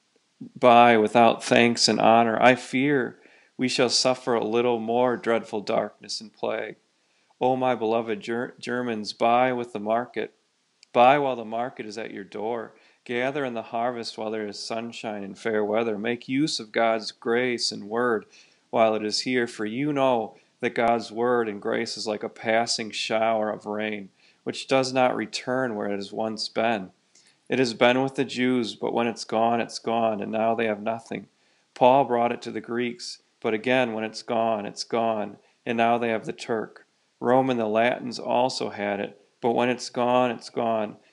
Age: 40-59